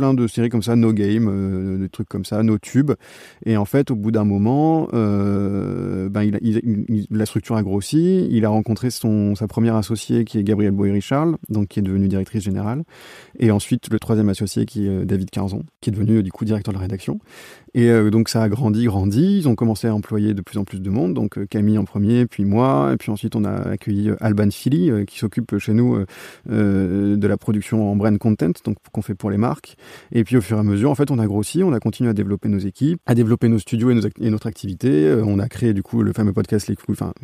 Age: 30-49